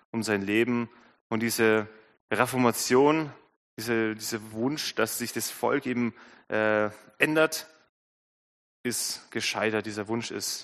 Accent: German